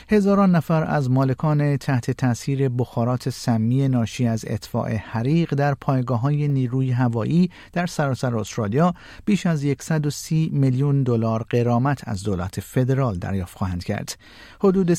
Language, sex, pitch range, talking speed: Persian, male, 115-150 Hz, 130 wpm